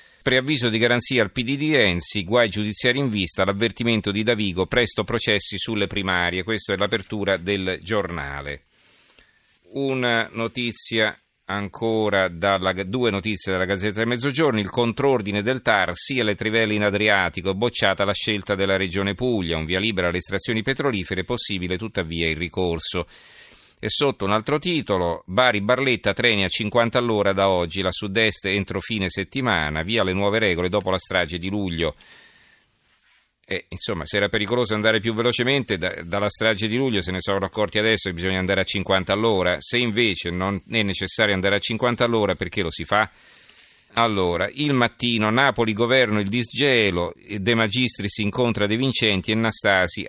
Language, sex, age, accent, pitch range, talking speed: Italian, male, 40-59, native, 95-120 Hz, 160 wpm